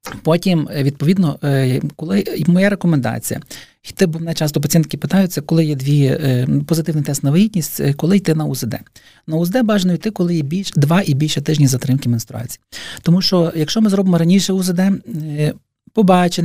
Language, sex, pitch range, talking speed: Ukrainian, male, 145-175 Hz, 170 wpm